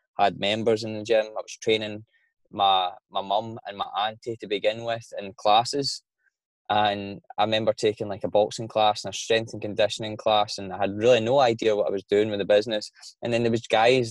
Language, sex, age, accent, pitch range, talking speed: English, male, 10-29, British, 105-120 Hz, 220 wpm